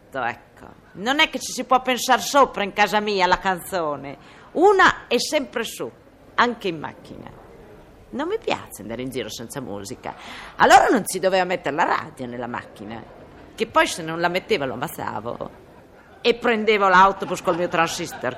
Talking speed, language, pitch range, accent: 170 wpm, Italian, 180-285 Hz, native